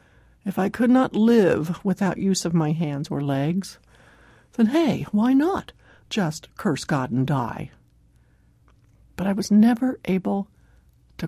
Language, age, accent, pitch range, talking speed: English, 60-79, American, 155-225 Hz, 145 wpm